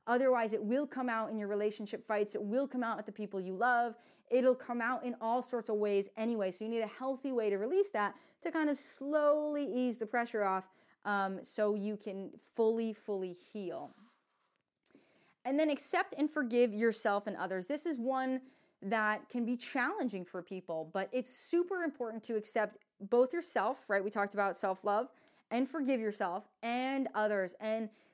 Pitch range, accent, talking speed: 205-255 Hz, American, 185 wpm